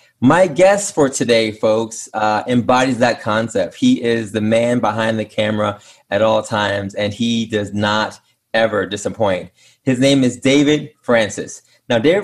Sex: male